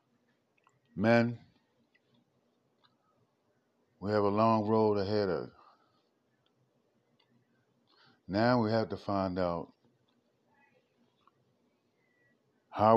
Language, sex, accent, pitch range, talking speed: English, male, American, 85-100 Hz, 75 wpm